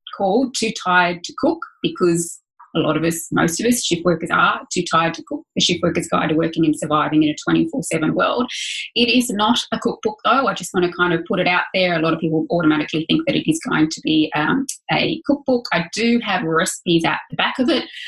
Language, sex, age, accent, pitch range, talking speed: English, female, 20-39, Australian, 160-225 Hz, 240 wpm